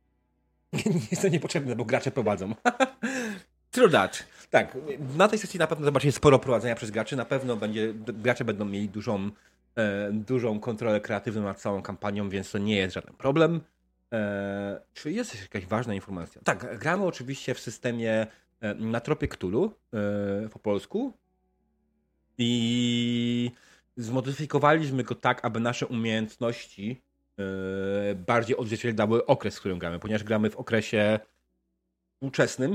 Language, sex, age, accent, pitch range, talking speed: Polish, male, 30-49, native, 100-125 Hz, 140 wpm